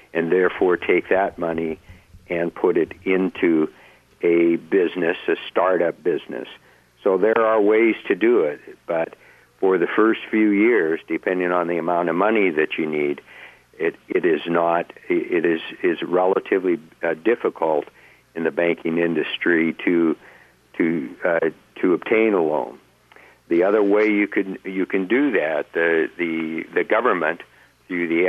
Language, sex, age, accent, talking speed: English, male, 60-79, American, 150 wpm